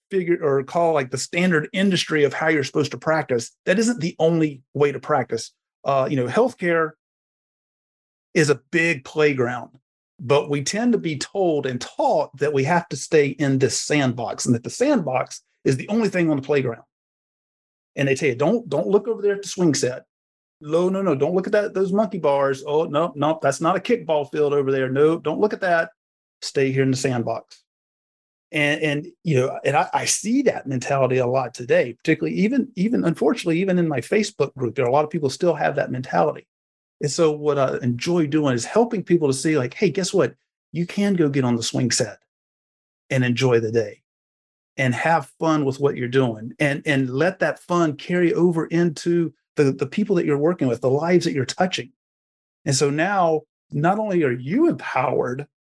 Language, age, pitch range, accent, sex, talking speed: English, 30-49, 135-175 Hz, American, male, 205 wpm